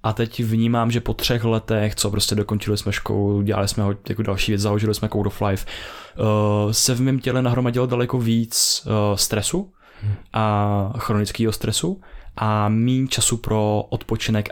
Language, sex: Czech, male